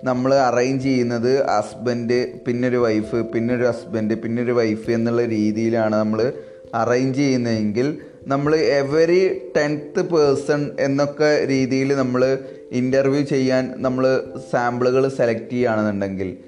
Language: Malayalam